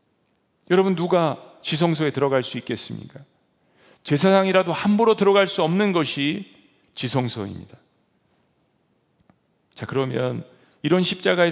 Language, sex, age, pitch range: Korean, male, 40-59, 120-175 Hz